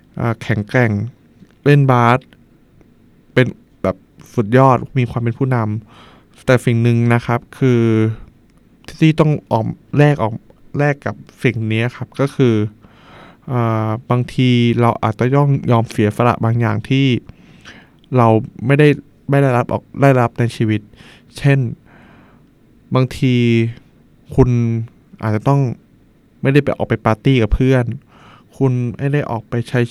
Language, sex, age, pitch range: Thai, male, 20-39, 115-130 Hz